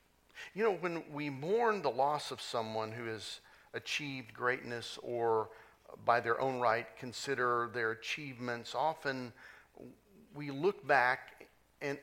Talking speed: 130 wpm